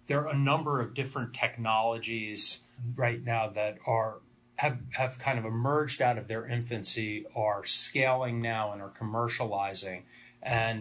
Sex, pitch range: male, 105-120 Hz